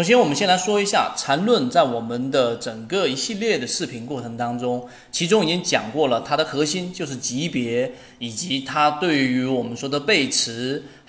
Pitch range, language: 125-210 Hz, Chinese